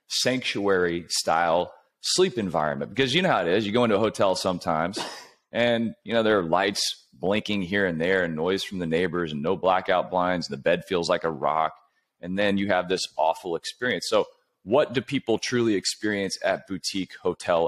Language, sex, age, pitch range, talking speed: English, male, 30-49, 90-125 Hz, 195 wpm